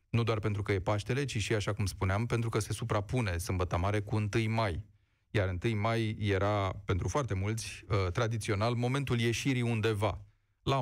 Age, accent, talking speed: 30-49, native, 185 wpm